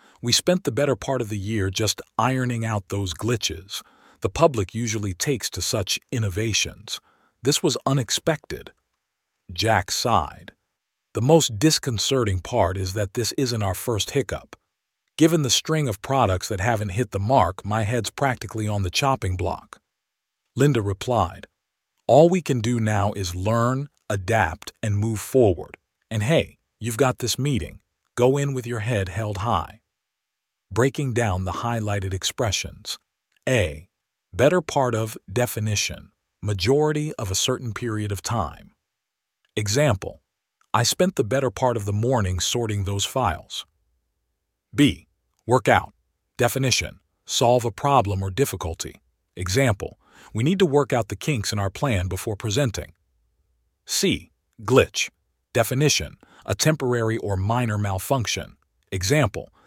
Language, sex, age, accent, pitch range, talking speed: English, male, 50-69, American, 95-125 Hz, 140 wpm